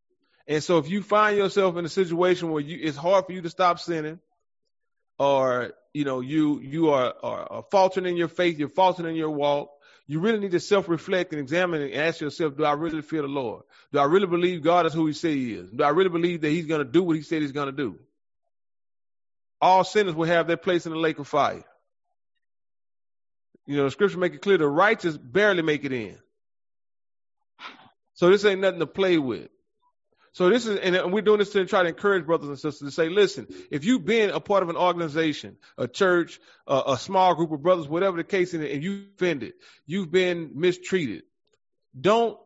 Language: English